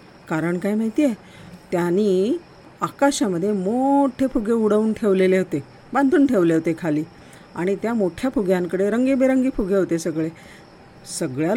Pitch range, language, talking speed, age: 185-260 Hz, Marathi, 125 wpm, 50-69